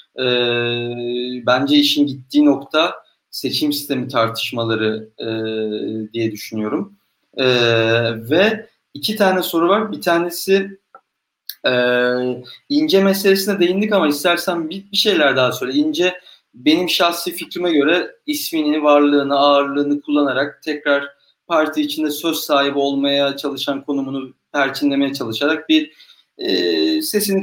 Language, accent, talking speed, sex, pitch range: Turkish, native, 110 wpm, male, 130-180 Hz